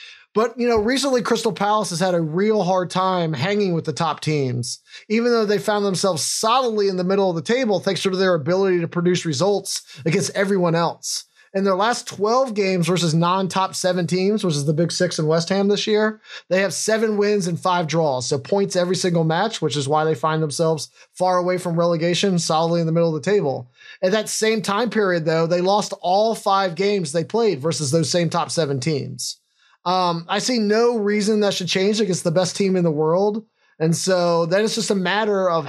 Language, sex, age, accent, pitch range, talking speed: English, male, 20-39, American, 170-205 Hz, 215 wpm